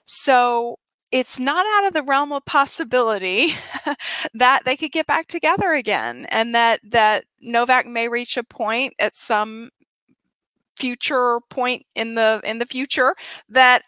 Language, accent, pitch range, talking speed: English, American, 195-250 Hz, 145 wpm